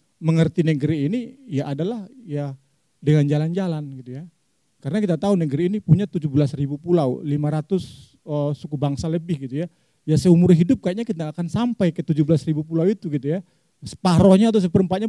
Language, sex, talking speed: Indonesian, male, 165 wpm